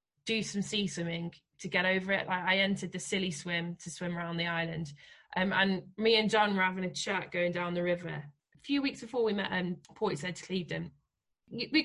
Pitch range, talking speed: 170-190 Hz, 215 wpm